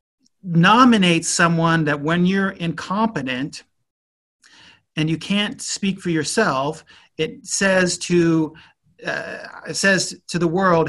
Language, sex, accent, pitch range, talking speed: English, male, American, 155-205 Hz, 100 wpm